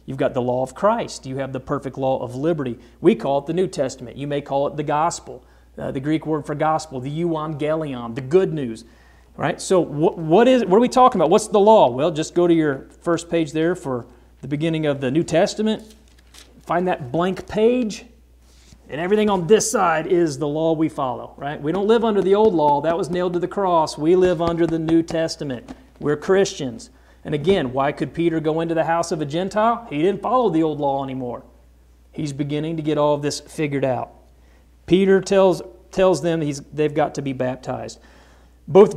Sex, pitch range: male, 140-190 Hz